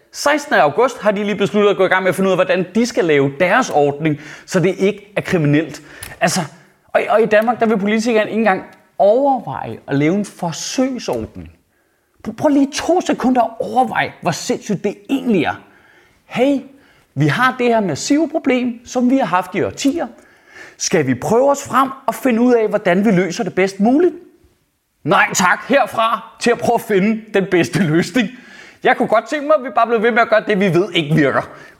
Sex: male